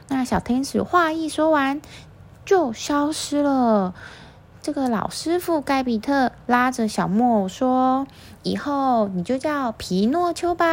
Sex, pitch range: female, 215-300 Hz